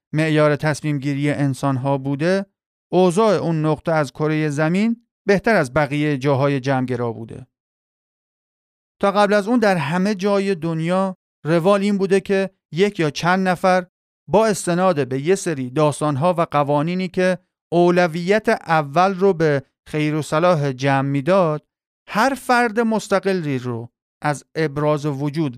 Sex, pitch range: male, 145-195 Hz